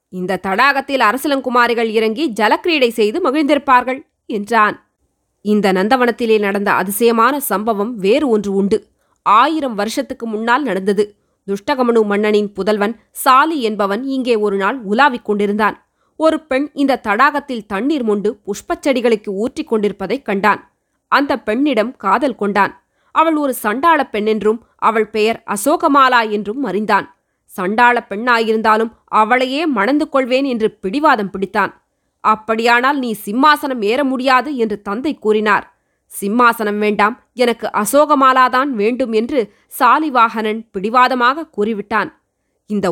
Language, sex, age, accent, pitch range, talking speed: Tamil, female, 20-39, native, 210-275 Hz, 110 wpm